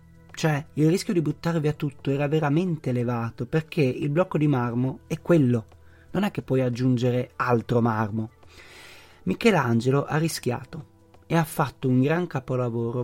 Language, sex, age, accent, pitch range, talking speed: Italian, male, 30-49, native, 120-150 Hz, 150 wpm